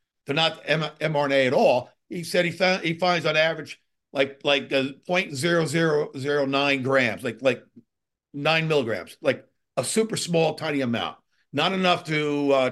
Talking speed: 155 wpm